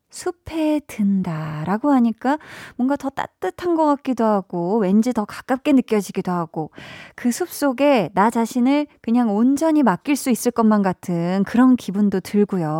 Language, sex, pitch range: Korean, female, 185-260 Hz